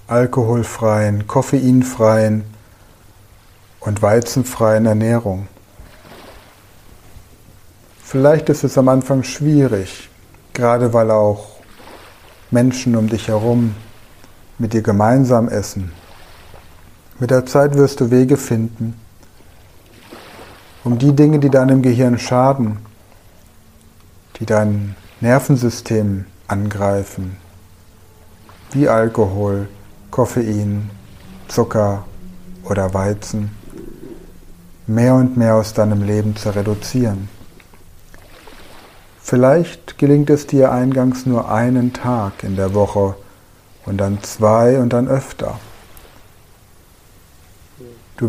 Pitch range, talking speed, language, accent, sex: 100-120 Hz, 90 wpm, German, German, male